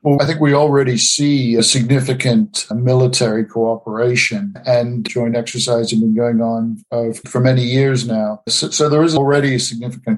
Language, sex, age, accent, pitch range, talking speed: English, male, 50-69, American, 120-135 Hz, 170 wpm